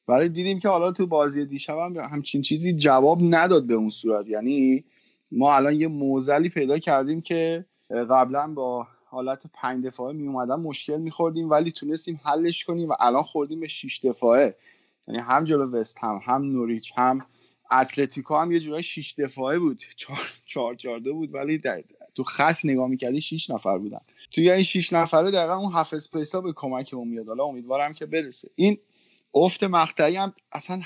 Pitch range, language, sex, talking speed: 130-170 Hz, Persian, male, 165 wpm